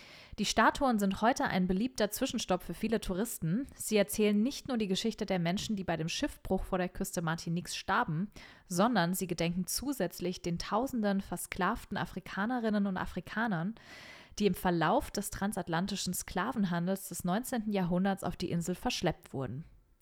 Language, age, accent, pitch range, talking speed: German, 30-49, German, 180-225 Hz, 155 wpm